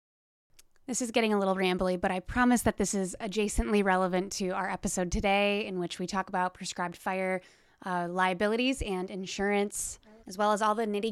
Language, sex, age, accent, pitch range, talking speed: English, female, 20-39, American, 180-205 Hz, 190 wpm